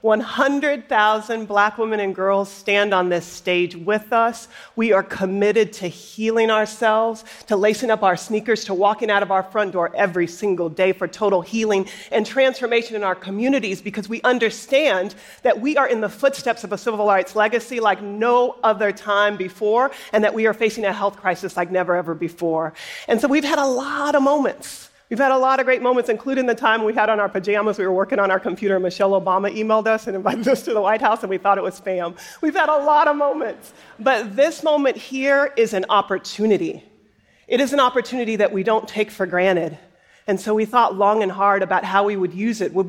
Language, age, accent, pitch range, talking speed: English, 40-59, American, 190-230 Hz, 215 wpm